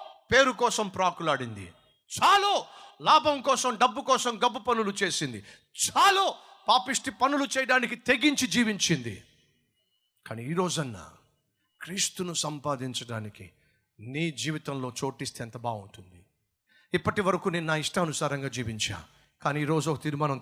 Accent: native